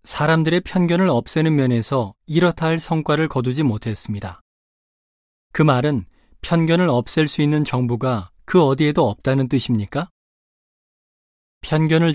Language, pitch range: Korean, 115-160 Hz